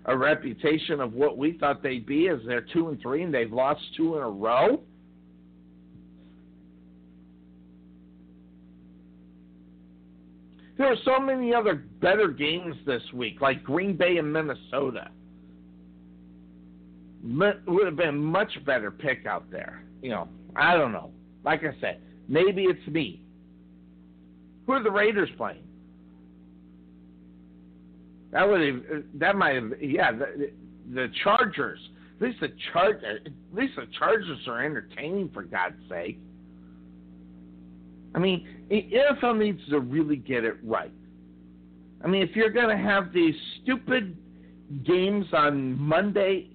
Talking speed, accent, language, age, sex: 135 wpm, American, English, 60-79, male